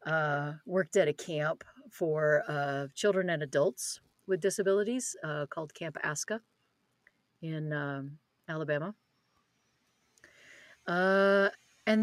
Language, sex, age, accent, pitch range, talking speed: English, female, 40-59, American, 150-200 Hz, 105 wpm